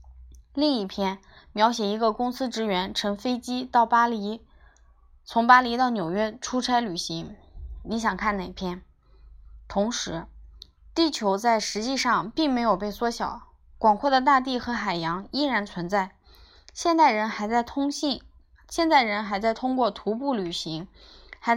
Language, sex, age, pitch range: Chinese, female, 20-39, 190-245 Hz